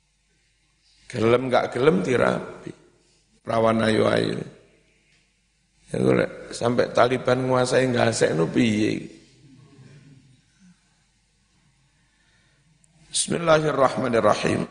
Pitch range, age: 125-165 Hz, 50-69